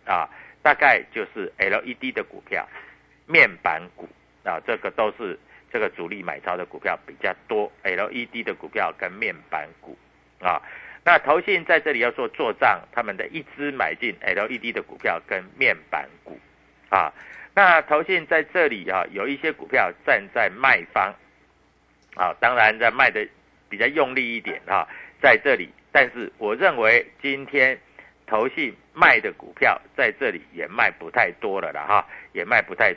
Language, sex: Chinese, male